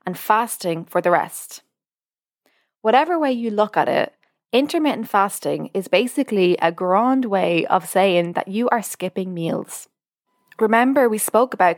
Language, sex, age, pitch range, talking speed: English, female, 20-39, 180-225 Hz, 150 wpm